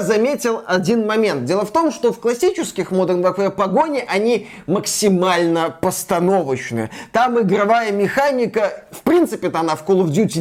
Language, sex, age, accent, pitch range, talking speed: Russian, male, 20-39, native, 190-255 Hz, 145 wpm